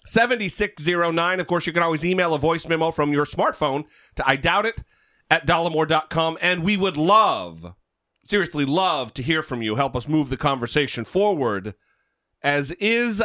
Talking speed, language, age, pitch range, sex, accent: 160 wpm, English, 40-59, 140-200 Hz, male, American